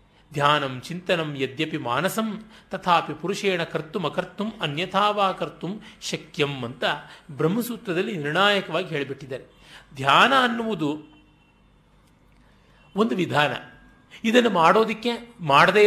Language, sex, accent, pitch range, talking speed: Kannada, male, native, 145-210 Hz, 85 wpm